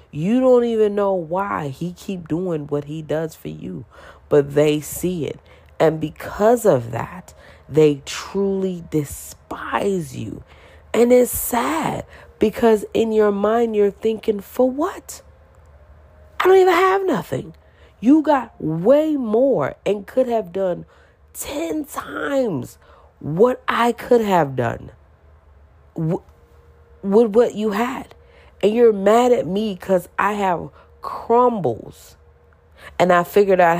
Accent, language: American, English